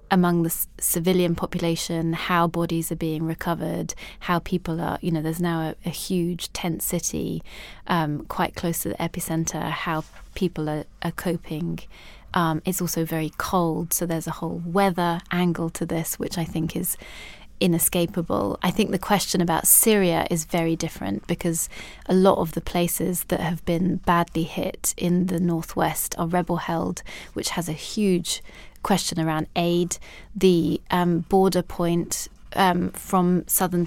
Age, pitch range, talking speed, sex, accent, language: 20-39, 165-180 Hz, 160 wpm, female, British, English